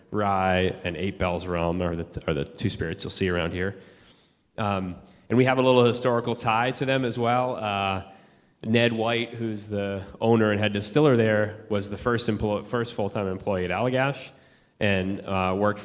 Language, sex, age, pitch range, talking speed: English, male, 30-49, 95-110 Hz, 180 wpm